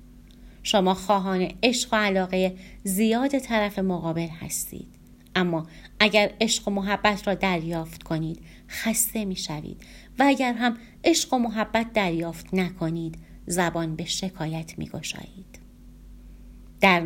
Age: 30-49